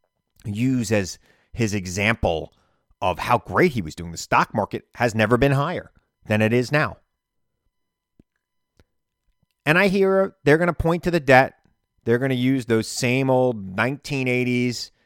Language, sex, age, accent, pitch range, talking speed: English, male, 30-49, American, 95-125 Hz, 155 wpm